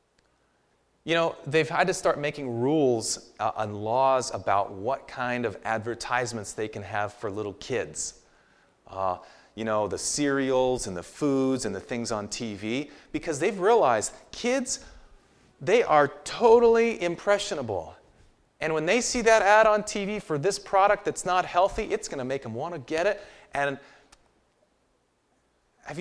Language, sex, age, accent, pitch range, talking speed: English, male, 30-49, American, 115-195 Hz, 155 wpm